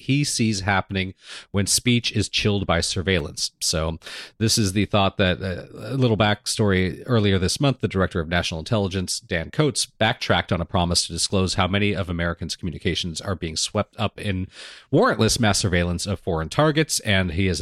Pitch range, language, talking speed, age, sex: 85-110 Hz, English, 185 wpm, 40-59, male